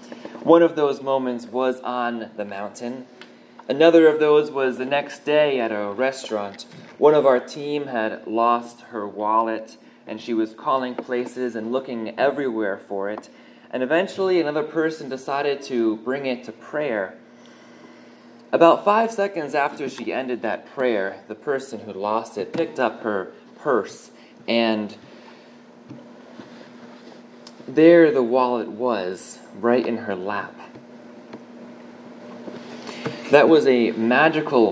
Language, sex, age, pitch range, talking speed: English, male, 20-39, 110-145 Hz, 130 wpm